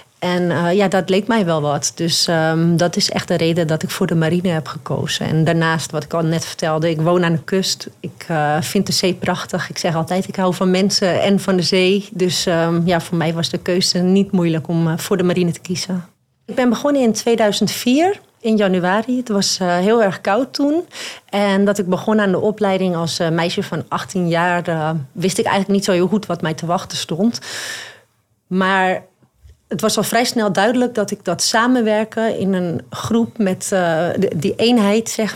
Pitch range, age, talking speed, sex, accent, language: 170-205 Hz, 30-49, 210 wpm, female, Dutch, Dutch